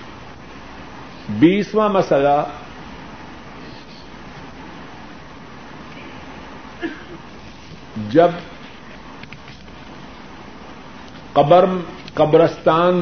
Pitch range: 140-175 Hz